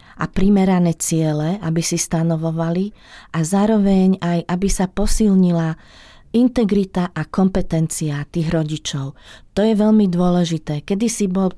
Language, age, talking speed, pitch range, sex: Slovak, 40-59, 125 wpm, 160-190 Hz, female